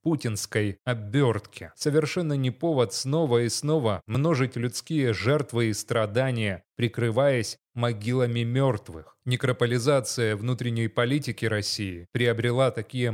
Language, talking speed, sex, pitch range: Russian, 100 wpm, male, 115-140 Hz